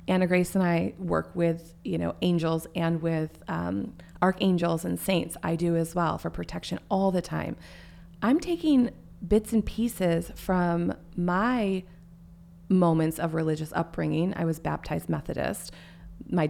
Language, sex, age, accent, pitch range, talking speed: English, female, 30-49, American, 160-185 Hz, 145 wpm